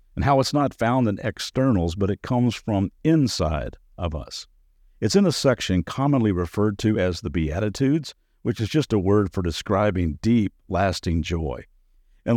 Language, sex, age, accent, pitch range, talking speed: English, male, 50-69, American, 95-135 Hz, 170 wpm